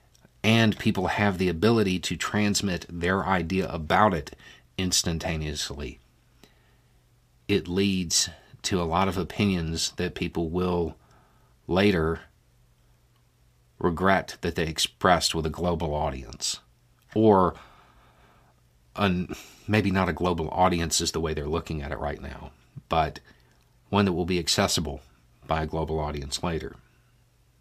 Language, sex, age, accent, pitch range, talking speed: English, male, 50-69, American, 75-95 Hz, 125 wpm